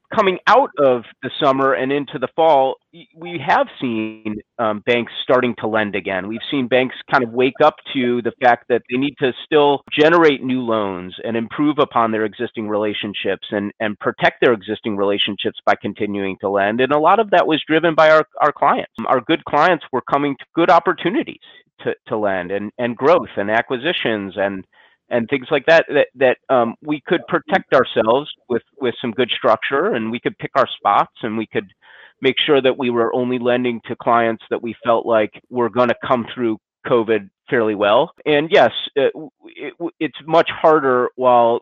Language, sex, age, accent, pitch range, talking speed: English, male, 30-49, American, 110-145 Hz, 195 wpm